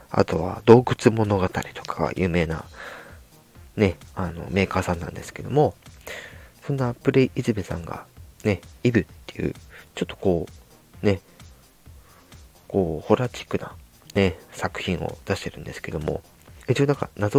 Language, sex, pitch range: Japanese, male, 85-125 Hz